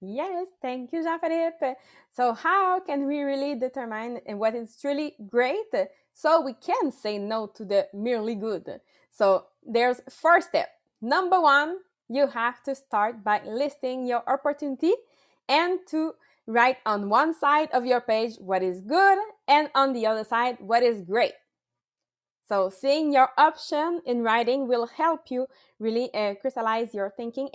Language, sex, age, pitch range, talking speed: English, female, 20-39, 220-285 Hz, 155 wpm